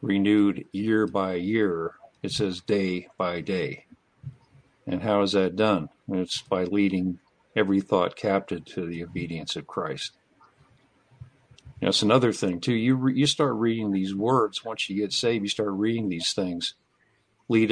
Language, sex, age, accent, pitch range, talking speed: English, male, 50-69, American, 95-115 Hz, 150 wpm